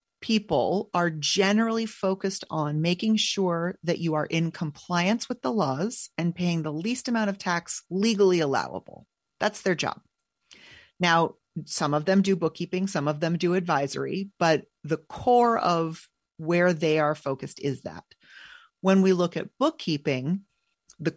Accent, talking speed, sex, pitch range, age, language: American, 155 wpm, female, 150-195 Hz, 40-59, English